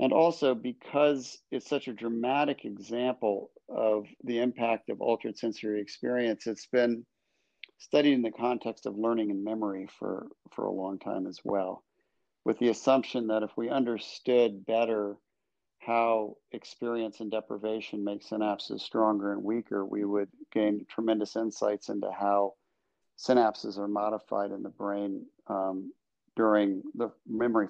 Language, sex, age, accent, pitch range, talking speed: English, male, 50-69, American, 105-125 Hz, 145 wpm